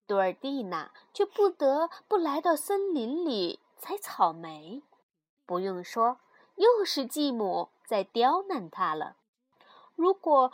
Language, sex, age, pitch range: Chinese, female, 20-39, 220-355 Hz